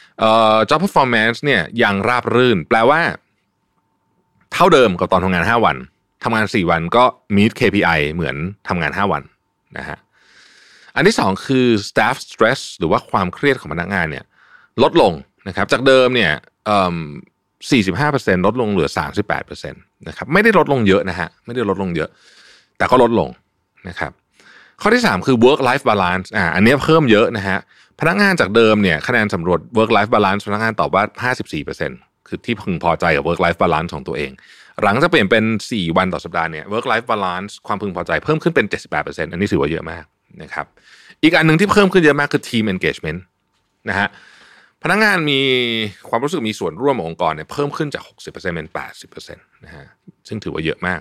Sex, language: male, Thai